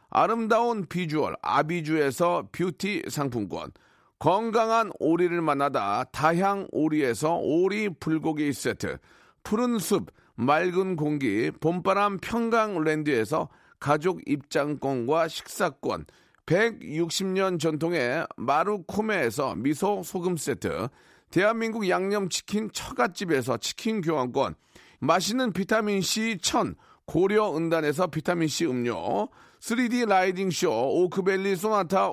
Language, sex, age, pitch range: Korean, male, 40-59, 160-210 Hz